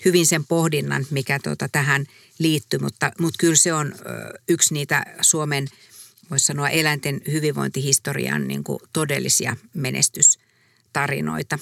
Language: Finnish